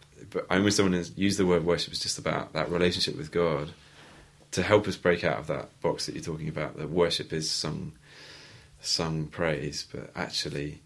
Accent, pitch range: British, 75-85 Hz